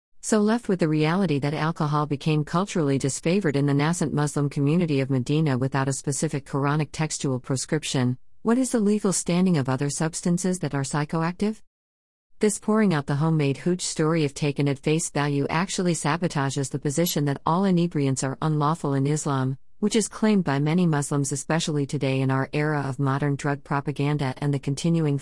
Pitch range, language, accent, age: 135-160 Hz, English, American, 50-69